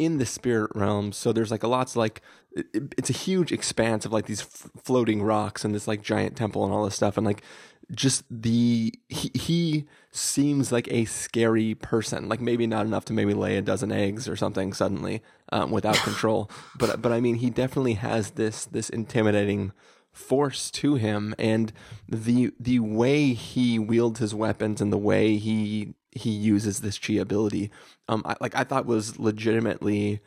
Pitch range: 105-125 Hz